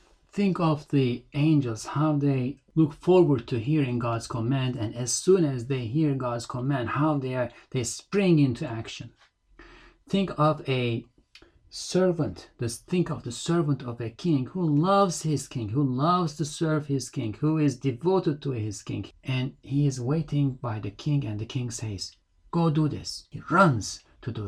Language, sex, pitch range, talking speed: English, male, 115-160 Hz, 175 wpm